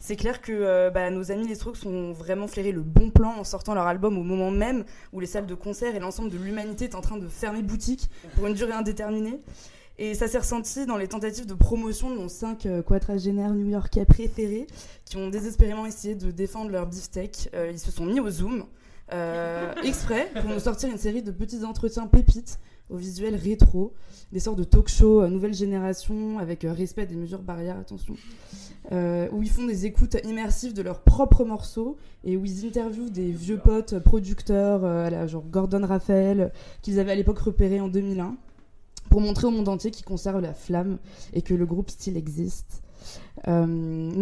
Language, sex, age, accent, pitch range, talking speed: French, female, 20-39, French, 180-220 Hz, 195 wpm